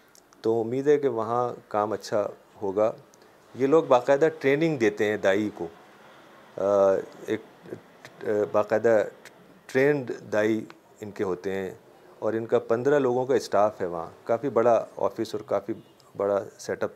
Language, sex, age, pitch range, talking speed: Urdu, male, 40-59, 105-125 Hz, 145 wpm